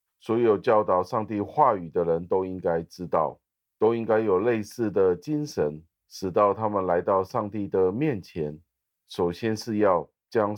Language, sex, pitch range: Chinese, male, 90-110 Hz